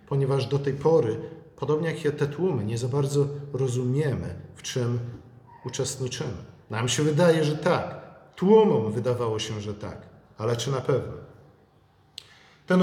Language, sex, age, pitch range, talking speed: Polish, male, 50-69, 125-155 Hz, 140 wpm